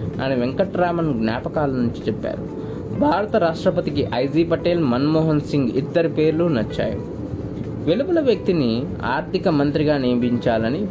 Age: 20-39